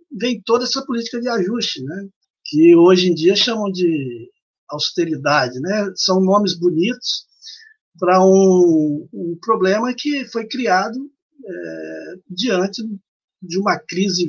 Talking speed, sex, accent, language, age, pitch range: 120 wpm, male, Brazilian, Portuguese, 60-79, 165-230 Hz